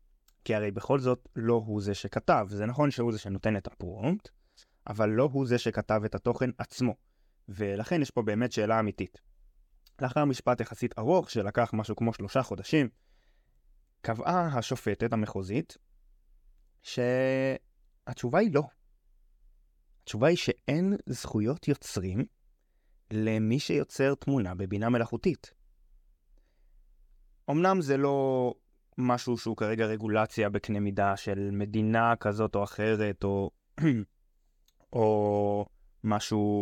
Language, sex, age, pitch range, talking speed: Hebrew, male, 20-39, 100-125 Hz, 115 wpm